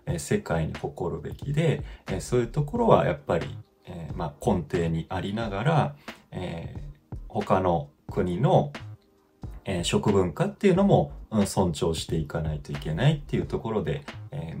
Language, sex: Japanese, male